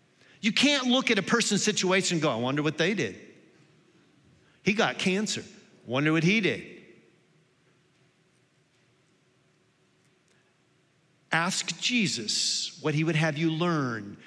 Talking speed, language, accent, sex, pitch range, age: 120 wpm, English, American, male, 140-190 Hz, 50-69